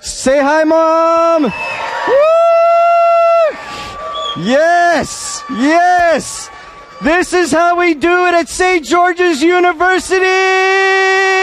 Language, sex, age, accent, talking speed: English, male, 40-59, American, 80 wpm